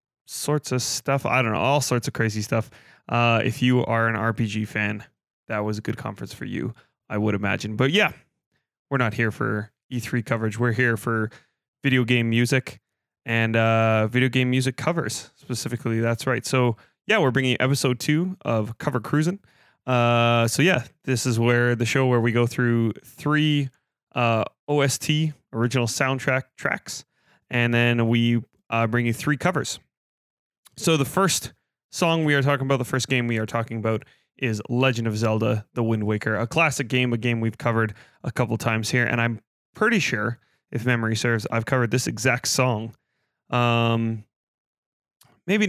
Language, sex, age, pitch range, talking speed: English, male, 20-39, 115-135 Hz, 175 wpm